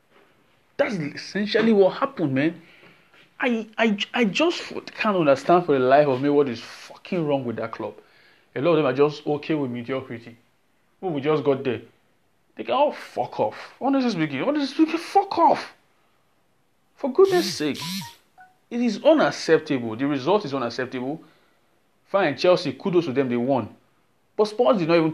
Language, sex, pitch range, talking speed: English, male, 130-210 Hz, 165 wpm